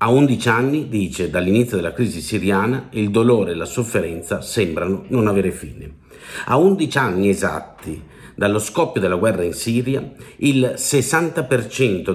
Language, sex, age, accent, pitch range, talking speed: Italian, male, 50-69, native, 100-135 Hz, 145 wpm